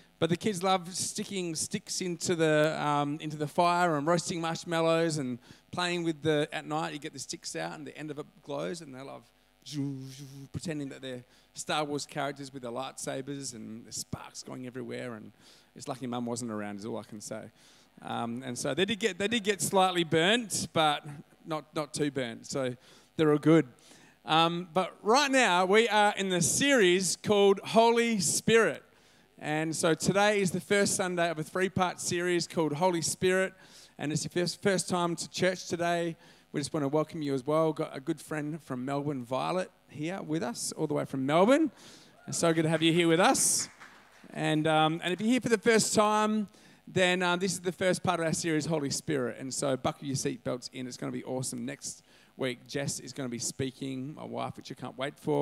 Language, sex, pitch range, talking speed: English, male, 140-180 Hz, 215 wpm